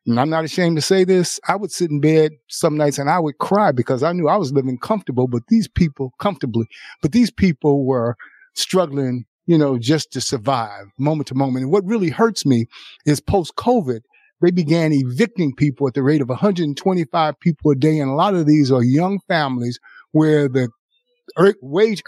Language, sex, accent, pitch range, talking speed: English, male, American, 130-170 Hz, 200 wpm